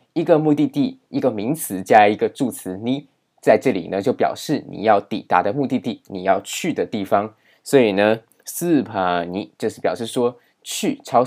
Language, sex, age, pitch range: Chinese, male, 20-39, 105-135 Hz